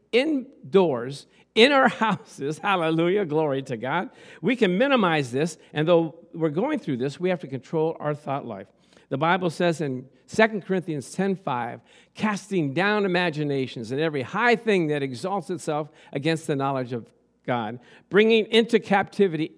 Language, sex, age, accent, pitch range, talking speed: English, male, 50-69, American, 150-205 Hz, 155 wpm